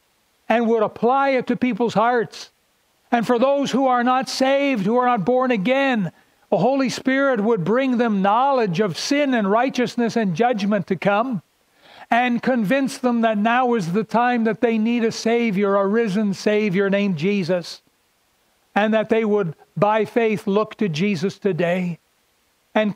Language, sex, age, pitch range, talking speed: English, male, 60-79, 210-245 Hz, 165 wpm